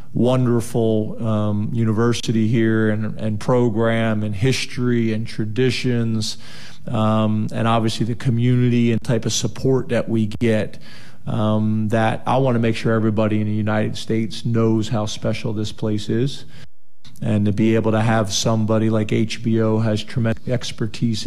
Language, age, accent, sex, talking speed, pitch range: English, 40-59, American, male, 150 wpm, 110-125 Hz